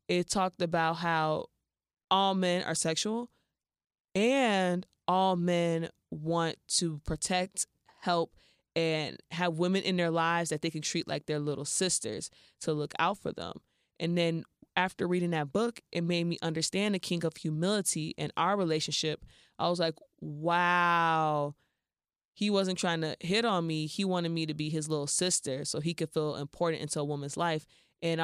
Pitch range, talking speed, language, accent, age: 155-180 Hz, 170 wpm, English, American, 20-39